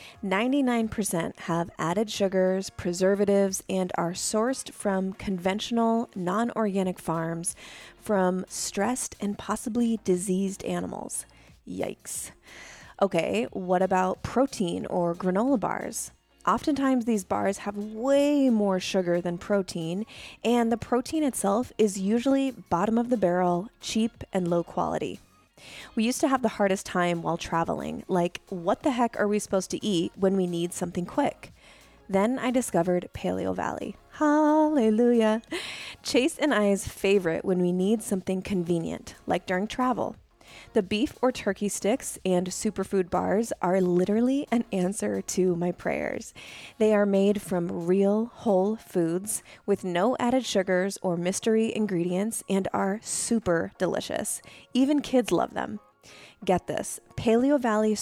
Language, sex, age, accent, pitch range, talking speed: English, female, 20-39, American, 185-230 Hz, 135 wpm